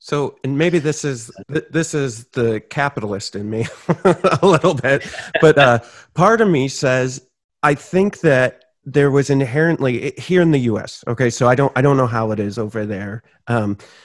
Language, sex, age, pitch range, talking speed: English, male, 30-49, 115-140 Hz, 185 wpm